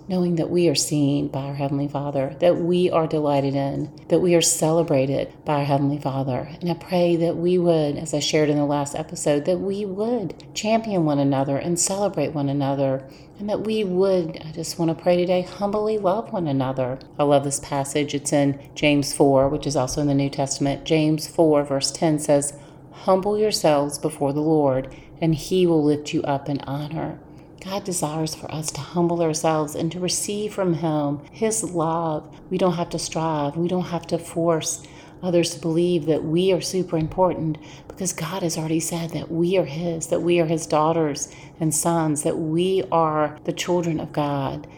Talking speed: 195 wpm